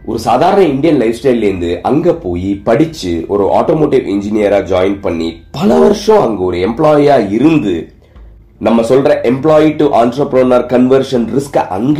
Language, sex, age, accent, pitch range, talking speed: Tamil, male, 30-49, native, 95-135 Hz, 95 wpm